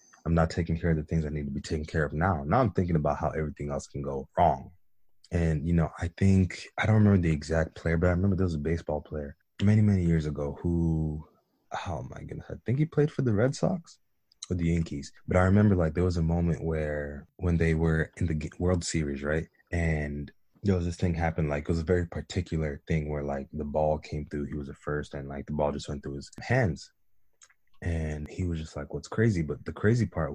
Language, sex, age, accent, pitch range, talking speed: English, male, 20-39, American, 75-85 Hz, 245 wpm